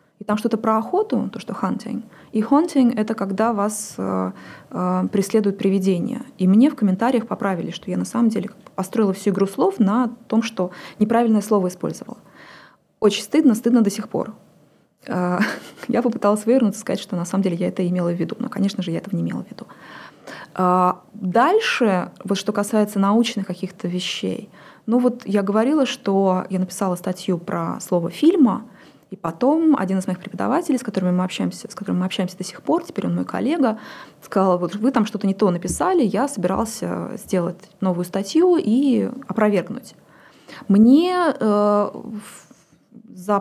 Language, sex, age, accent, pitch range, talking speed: Russian, female, 20-39, native, 185-230 Hz, 165 wpm